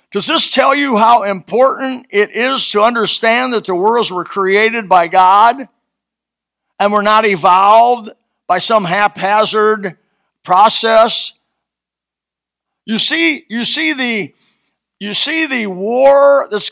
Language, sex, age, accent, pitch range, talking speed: English, male, 50-69, American, 195-235 Hz, 125 wpm